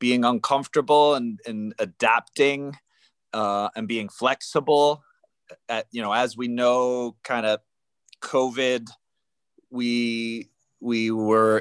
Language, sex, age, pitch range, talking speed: English, male, 30-49, 115-145 Hz, 110 wpm